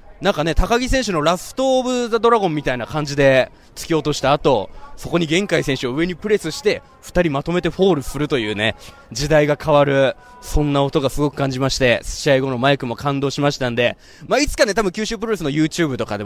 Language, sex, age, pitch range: Japanese, male, 20-39, 135-180 Hz